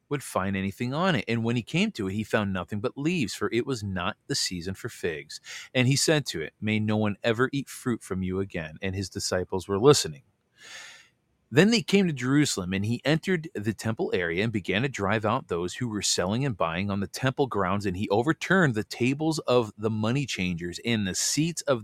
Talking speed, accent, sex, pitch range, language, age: 225 wpm, American, male, 105-140 Hz, English, 40-59